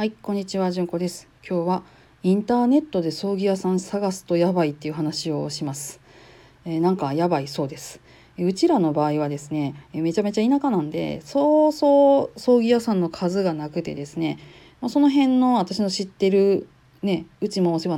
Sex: female